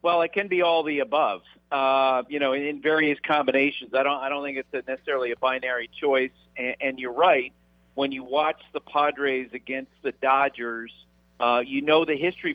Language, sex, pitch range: English, male, 130-165 Hz